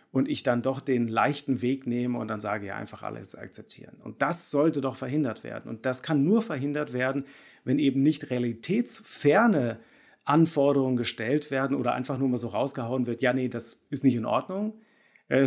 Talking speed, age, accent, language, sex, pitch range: 190 wpm, 40-59, German, German, male, 115-145 Hz